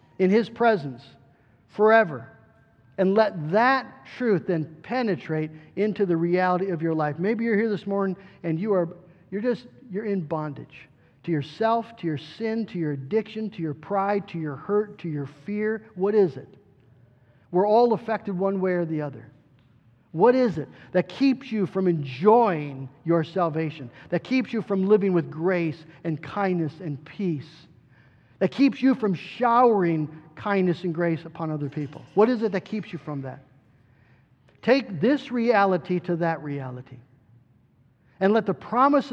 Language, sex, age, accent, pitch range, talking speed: English, male, 50-69, American, 150-210 Hz, 165 wpm